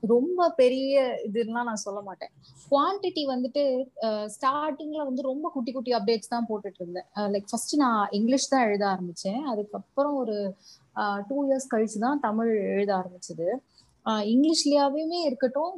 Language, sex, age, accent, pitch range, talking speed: Tamil, female, 20-39, native, 210-270 Hz, 135 wpm